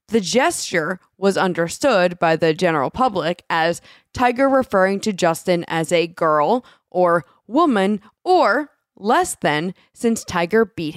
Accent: American